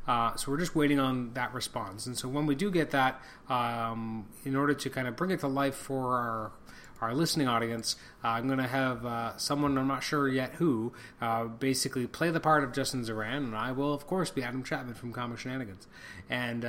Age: 30-49